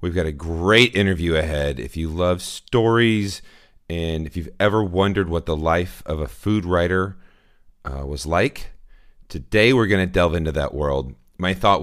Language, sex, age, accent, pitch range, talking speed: English, male, 40-59, American, 75-105 Hz, 170 wpm